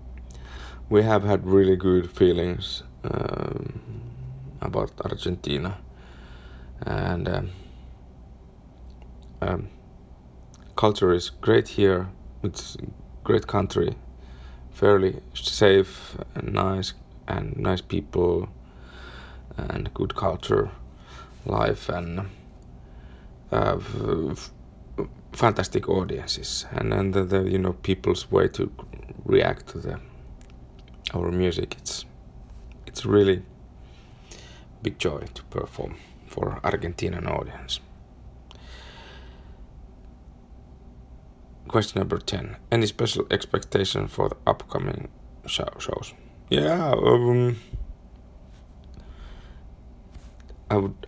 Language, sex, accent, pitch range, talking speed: Spanish, male, Finnish, 65-95 Hz, 85 wpm